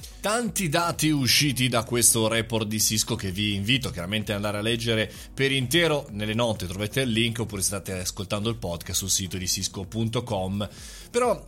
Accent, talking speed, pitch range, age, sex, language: native, 175 wpm, 110-145 Hz, 30-49, male, Italian